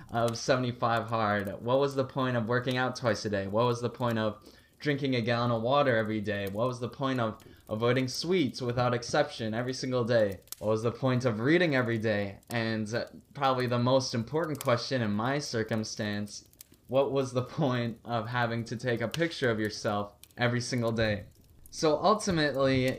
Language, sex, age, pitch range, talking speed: English, male, 20-39, 110-135 Hz, 185 wpm